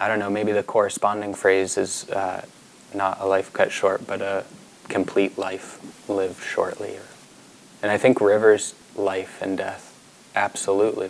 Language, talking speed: English, 150 wpm